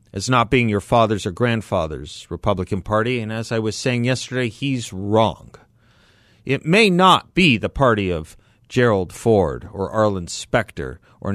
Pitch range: 110-140 Hz